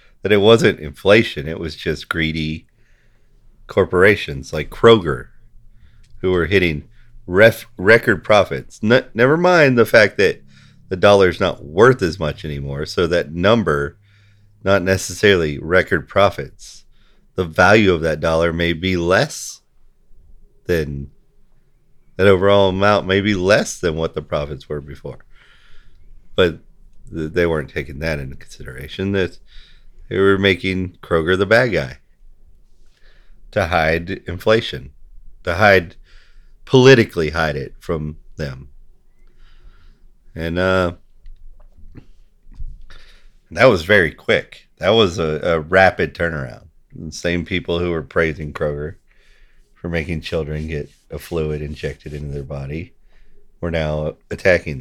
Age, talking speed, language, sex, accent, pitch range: 40-59, 125 wpm, English, male, American, 75-95 Hz